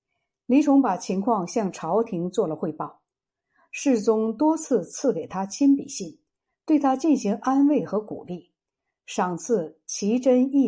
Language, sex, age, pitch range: Chinese, female, 60-79, 185-260 Hz